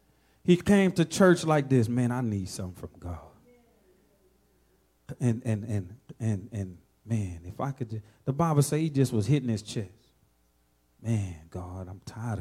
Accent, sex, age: American, male, 40-59